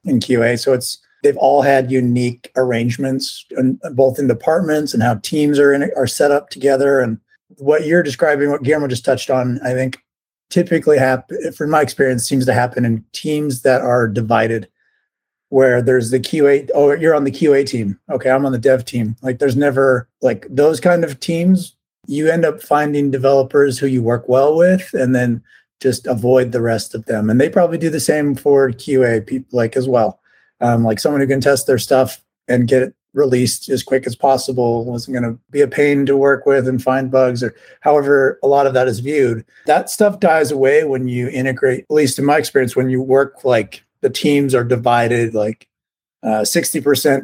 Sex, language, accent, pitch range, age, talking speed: male, English, American, 125-145 Hz, 30-49, 200 wpm